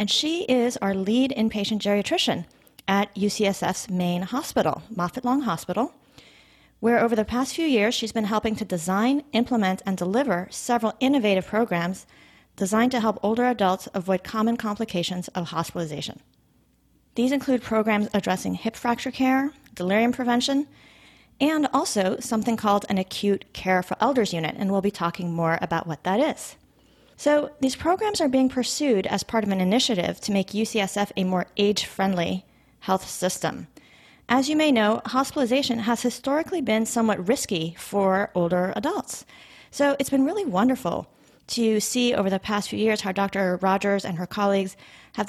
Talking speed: 160 wpm